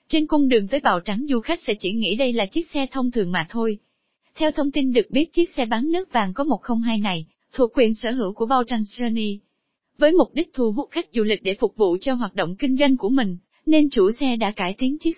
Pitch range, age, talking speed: 210-285 Hz, 20-39, 255 wpm